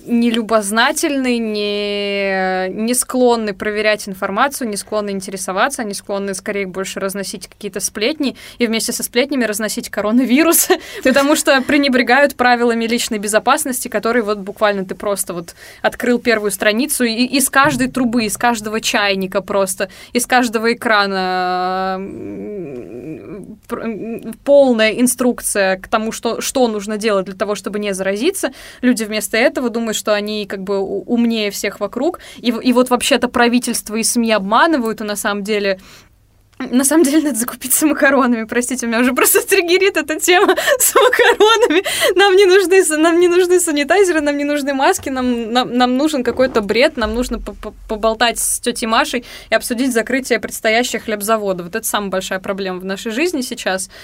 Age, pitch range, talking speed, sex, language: 20-39, 210-265 Hz, 150 wpm, female, Russian